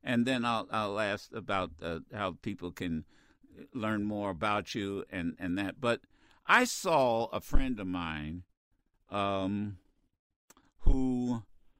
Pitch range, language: 95-130 Hz, English